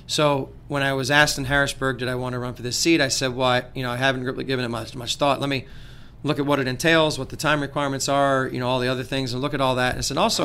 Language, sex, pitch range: English, male, 130-150 Hz